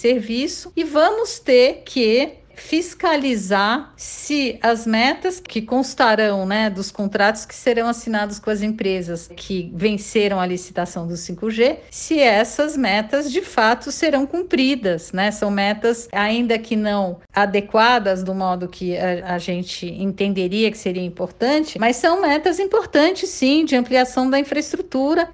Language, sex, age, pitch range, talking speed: Portuguese, female, 50-69, 200-260 Hz, 140 wpm